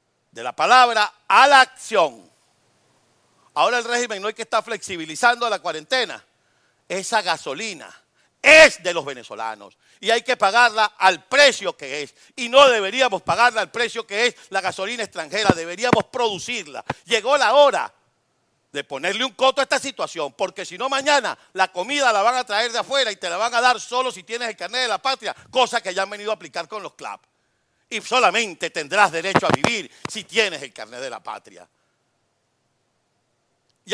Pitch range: 180-245 Hz